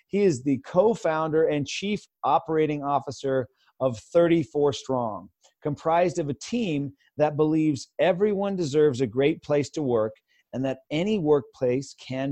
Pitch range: 140-170 Hz